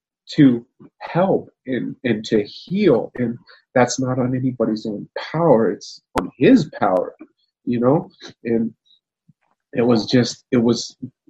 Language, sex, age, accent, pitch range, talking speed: English, male, 30-49, American, 110-145 Hz, 135 wpm